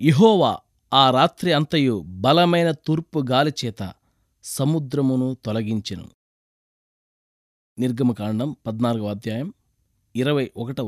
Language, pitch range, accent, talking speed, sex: Telugu, 120-190 Hz, native, 75 wpm, male